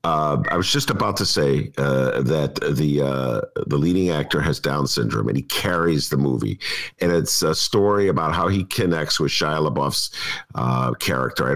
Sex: male